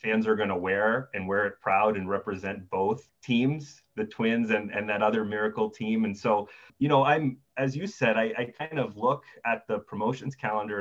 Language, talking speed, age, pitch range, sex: English, 210 wpm, 30-49, 105-130 Hz, male